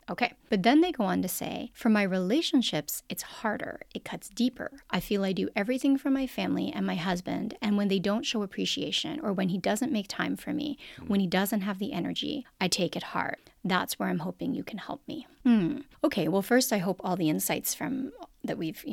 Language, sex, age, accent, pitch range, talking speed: English, female, 30-49, American, 195-265 Hz, 225 wpm